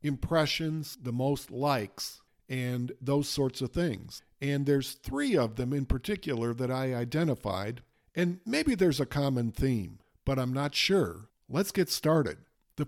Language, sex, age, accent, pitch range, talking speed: English, male, 50-69, American, 120-155 Hz, 155 wpm